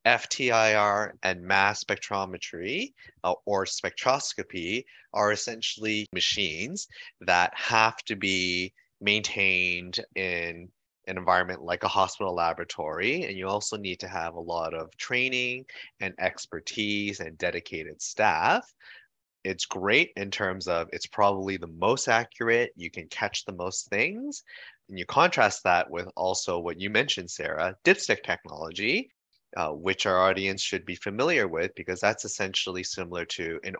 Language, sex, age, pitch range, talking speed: English, male, 30-49, 90-105 Hz, 140 wpm